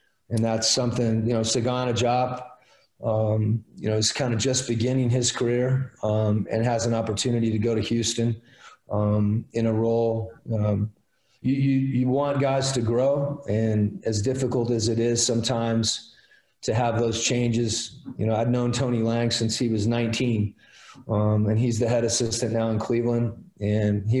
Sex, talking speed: male, 175 wpm